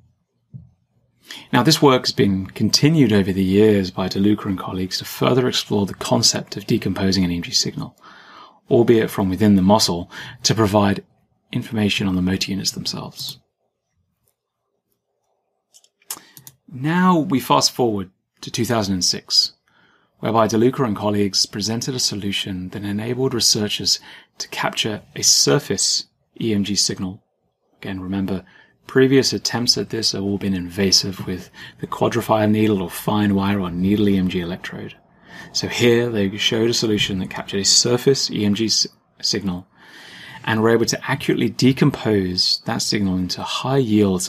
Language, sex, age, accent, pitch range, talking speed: English, male, 30-49, British, 95-120 Hz, 140 wpm